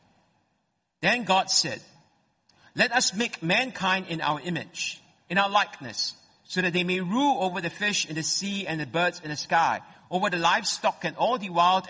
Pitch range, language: 150-195 Hz, English